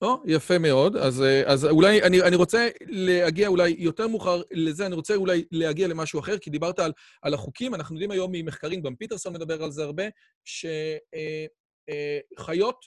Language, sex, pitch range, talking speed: Hebrew, male, 160-210 Hz, 175 wpm